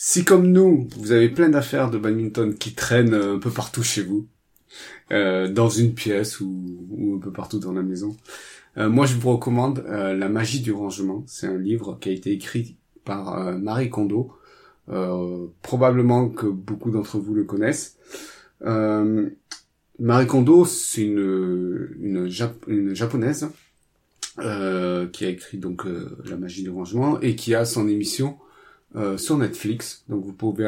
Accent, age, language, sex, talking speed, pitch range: French, 30-49, French, male, 165 wpm, 100-120 Hz